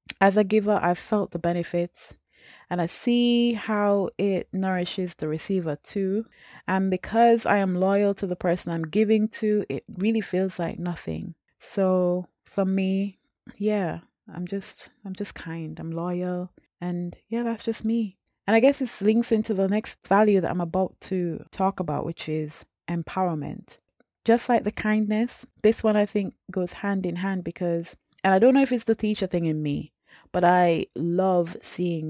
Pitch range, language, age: 160-205 Hz, English, 20-39